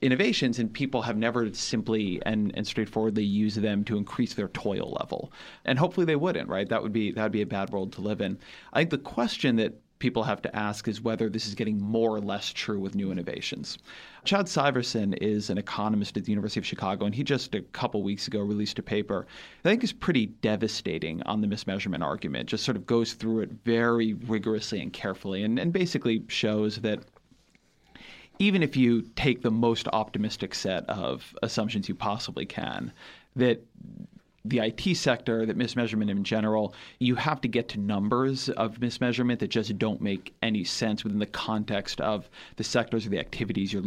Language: English